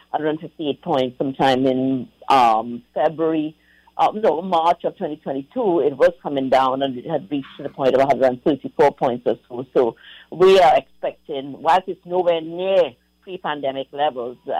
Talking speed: 150 wpm